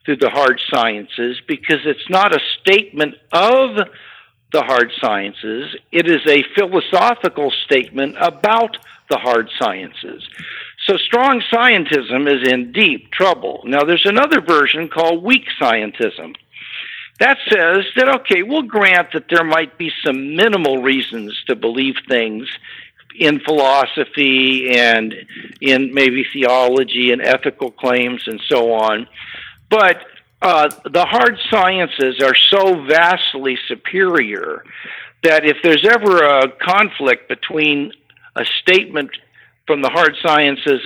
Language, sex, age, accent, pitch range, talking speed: English, male, 60-79, American, 130-190 Hz, 125 wpm